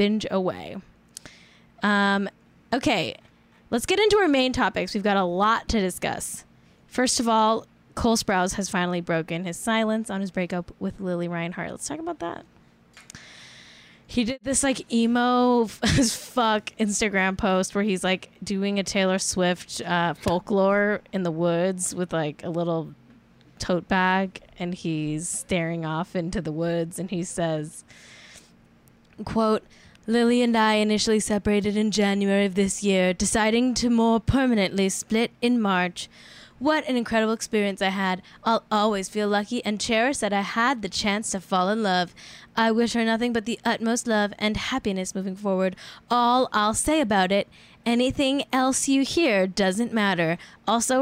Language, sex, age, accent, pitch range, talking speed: English, female, 10-29, American, 185-235 Hz, 160 wpm